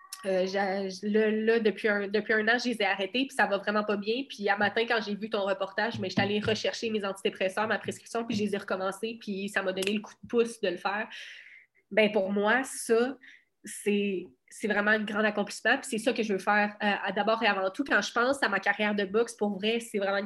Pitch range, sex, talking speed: 195-225 Hz, female, 255 wpm